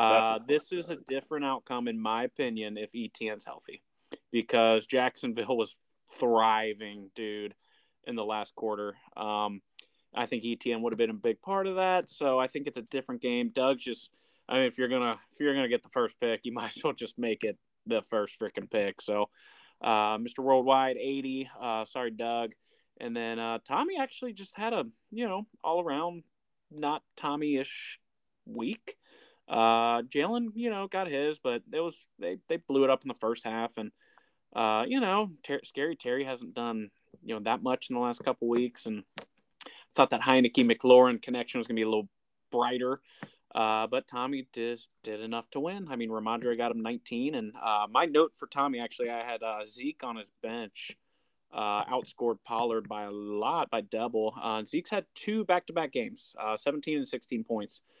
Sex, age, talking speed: male, 20-39, 190 wpm